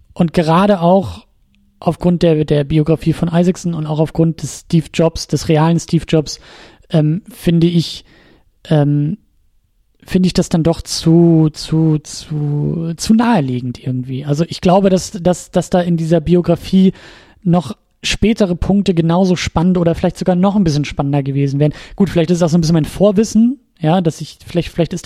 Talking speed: 175 wpm